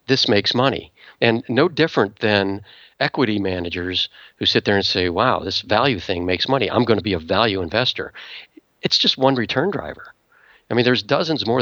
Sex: male